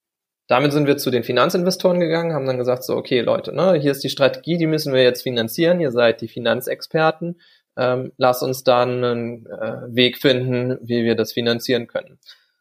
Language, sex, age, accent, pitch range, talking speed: German, male, 20-39, German, 115-135 Hz, 190 wpm